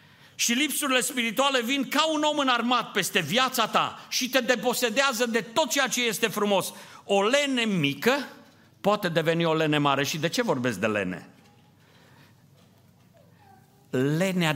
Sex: male